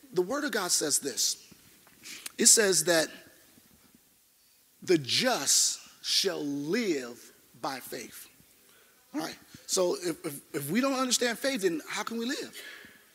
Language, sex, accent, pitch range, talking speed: English, male, American, 180-260 Hz, 130 wpm